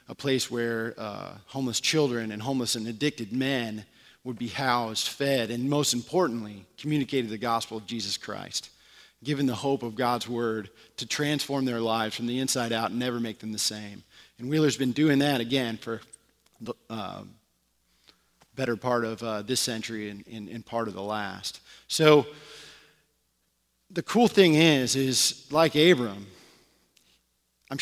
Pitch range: 115-140 Hz